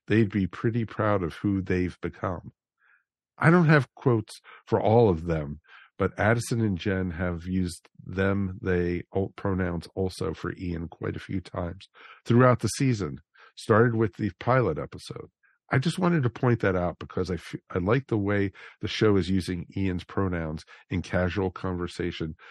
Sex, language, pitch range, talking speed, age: male, English, 85-100 Hz, 170 wpm, 50-69